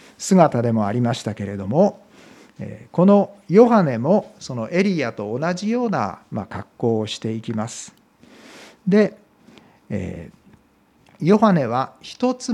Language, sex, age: Japanese, male, 50-69